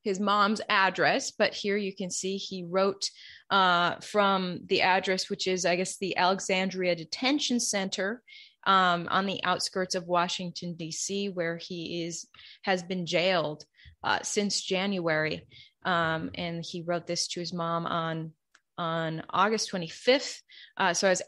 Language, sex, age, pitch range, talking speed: English, female, 20-39, 175-195 Hz, 150 wpm